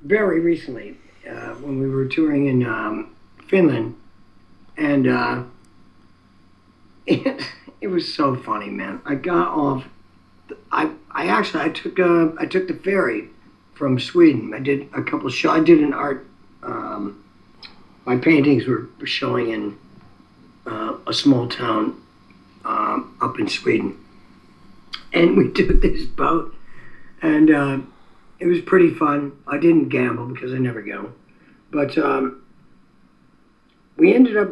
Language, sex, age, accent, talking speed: English, male, 50-69, American, 140 wpm